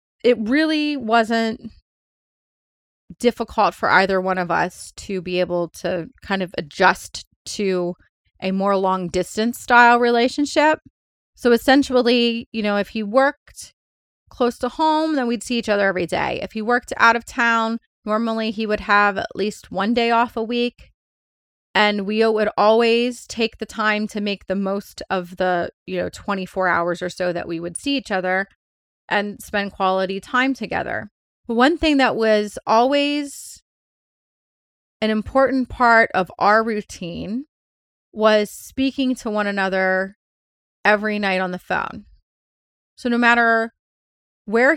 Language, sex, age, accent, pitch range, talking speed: English, female, 30-49, American, 190-240 Hz, 150 wpm